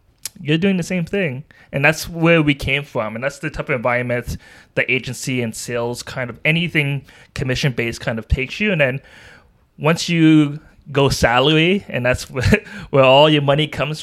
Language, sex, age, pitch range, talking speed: English, male, 20-39, 115-145 Hz, 180 wpm